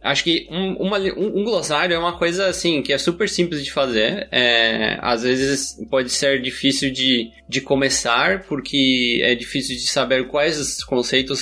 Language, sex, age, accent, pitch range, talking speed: Portuguese, male, 20-39, Brazilian, 130-170 Hz, 180 wpm